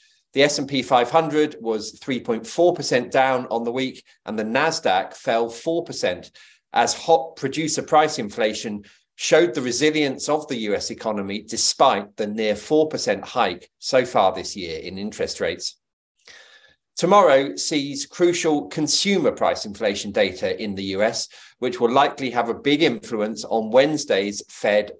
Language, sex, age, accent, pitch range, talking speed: English, male, 40-59, British, 115-165 Hz, 140 wpm